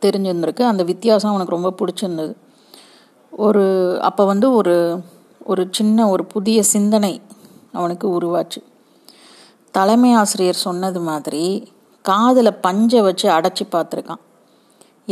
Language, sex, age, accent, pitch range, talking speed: Tamil, female, 30-49, native, 180-220 Hz, 105 wpm